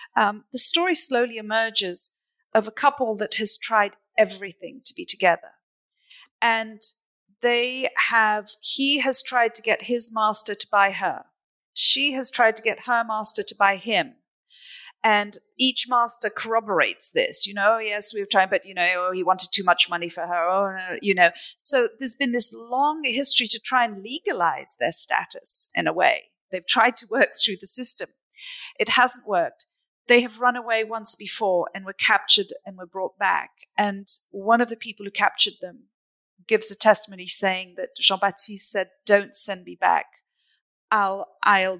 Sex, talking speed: female, 175 wpm